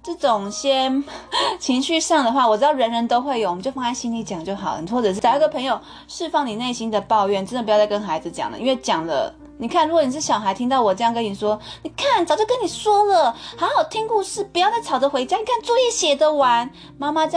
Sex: female